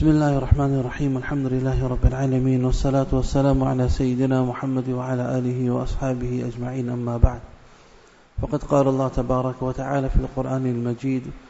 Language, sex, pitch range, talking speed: English, male, 130-150 Hz, 140 wpm